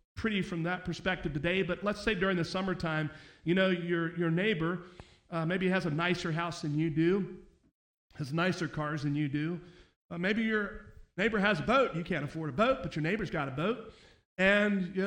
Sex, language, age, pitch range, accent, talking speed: male, English, 40-59, 165-190 Hz, American, 205 wpm